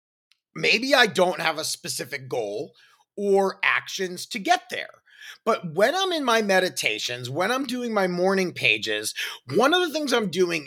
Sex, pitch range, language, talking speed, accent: male, 170-240 Hz, English, 170 wpm, American